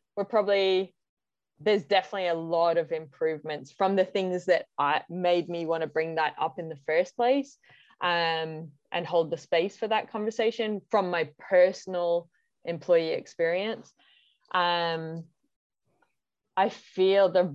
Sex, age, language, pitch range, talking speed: female, 20-39, English, 155-190 Hz, 140 wpm